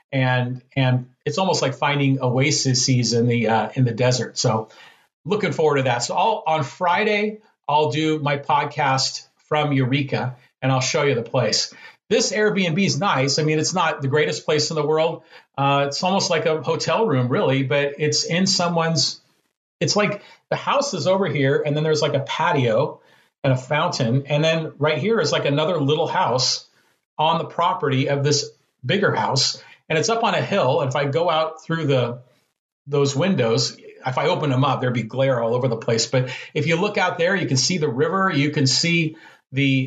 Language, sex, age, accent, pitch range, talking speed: English, male, 40-59, American, 130-170 Hz, 200 wpm